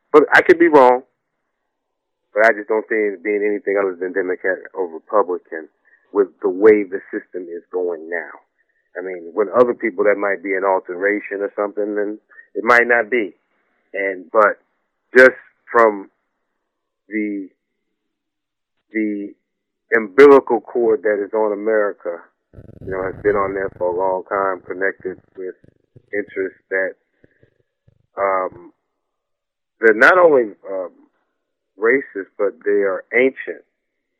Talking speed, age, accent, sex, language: 140 wpm, 30-49, American, male, English